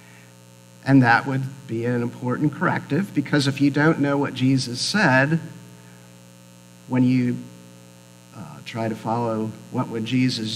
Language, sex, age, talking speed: English, male, 50-69, 135 wpm